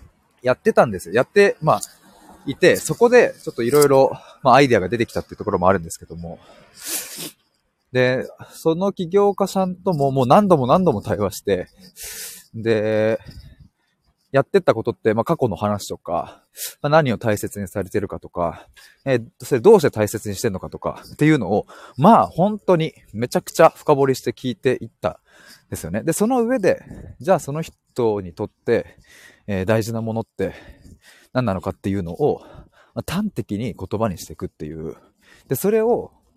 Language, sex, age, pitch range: Japanese, male, 20-39, 100-160 Hz